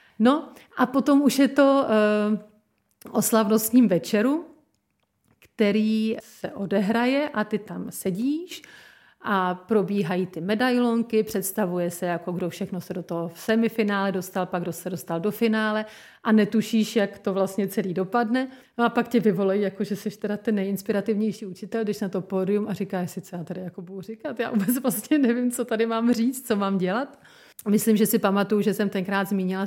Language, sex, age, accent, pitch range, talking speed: Czech, female, 40-59, native, 190-230 Hz, 175 wpm